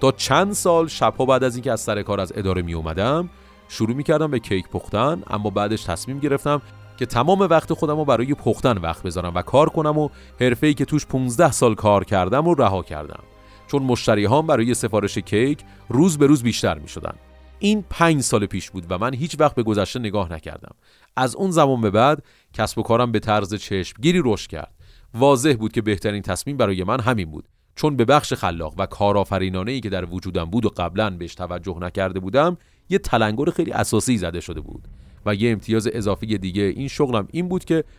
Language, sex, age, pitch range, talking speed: Persian, male, 30-49, 95-135 Hz, 195 wpm